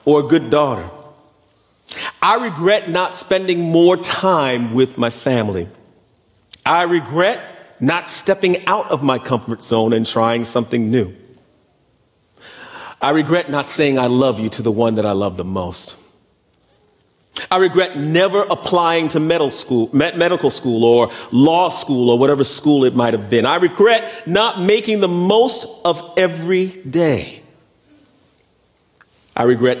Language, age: English, 40-59